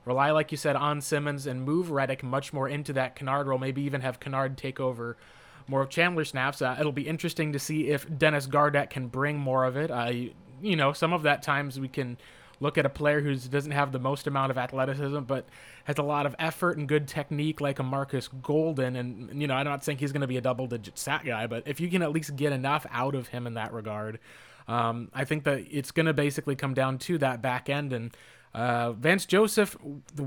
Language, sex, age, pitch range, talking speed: English, male, 20-39, 130-155 Hz, 240 wpm